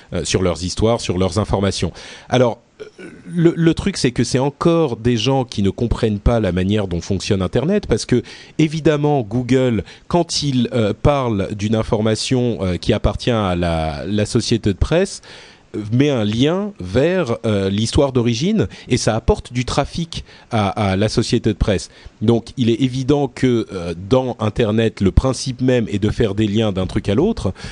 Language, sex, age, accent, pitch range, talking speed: French, male, 40-59, French, 105-140 Hz, 180 wpm